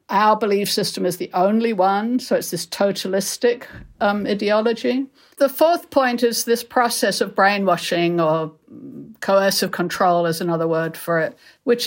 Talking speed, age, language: 150 wpm, 60-79, English